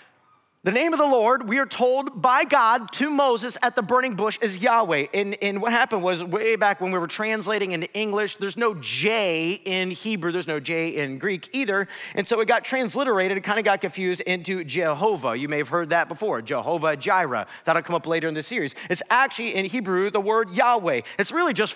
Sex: male